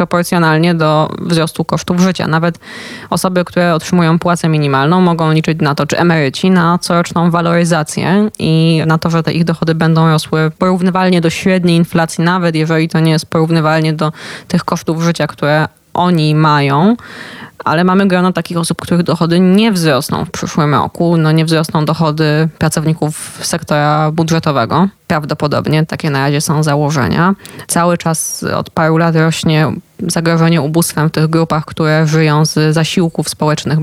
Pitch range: 155-170 Hz